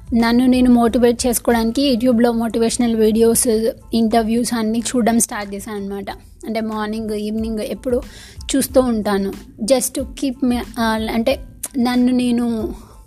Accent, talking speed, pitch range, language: native, 110 wpm, 220-250 Hz, Telugu